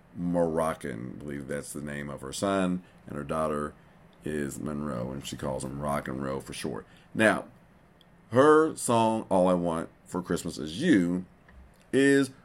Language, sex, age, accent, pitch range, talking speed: English, male, 50-69, American, 85-125 Hz, 165 wpm